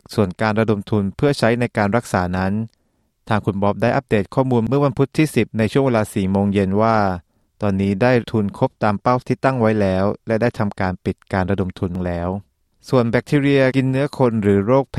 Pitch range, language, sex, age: 100-120 Hz, Thai, male, 20-39